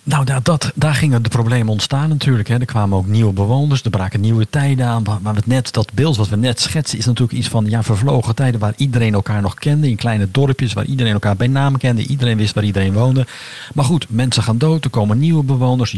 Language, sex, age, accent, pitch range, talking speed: Dutch, male, 50-69, Dutch, 110-140 Hz, 240 wpm